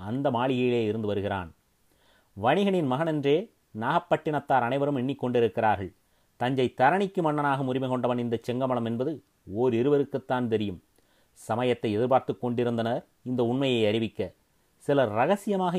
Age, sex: 30-49, male